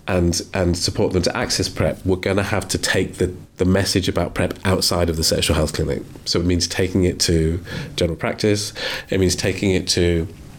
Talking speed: 210 wpm